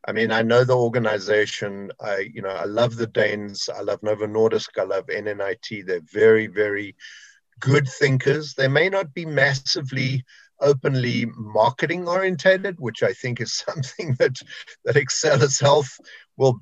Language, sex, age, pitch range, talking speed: English, male, 50-69, 115-140 Hz, 155 wpm